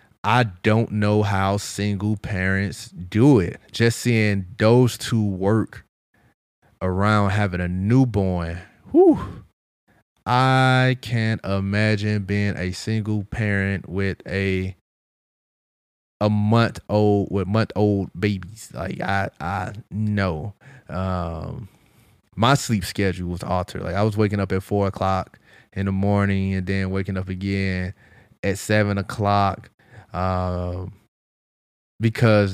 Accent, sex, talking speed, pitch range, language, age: American, male, 120 wpm, 95-110 Hz, English, 20-39